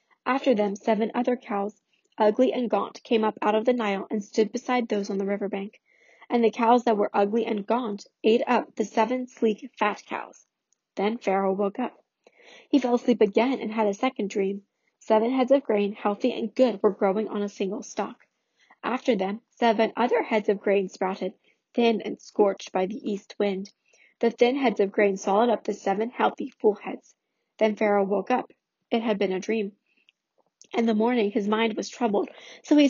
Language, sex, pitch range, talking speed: English, female, 210-250 Hz, 195 wpm